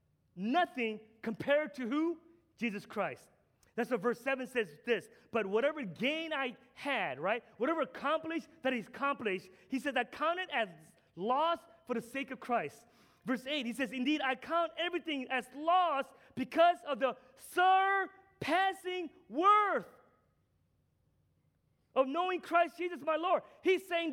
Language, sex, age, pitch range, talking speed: English, male, 30-49, 225-330 Hz, 140 wpm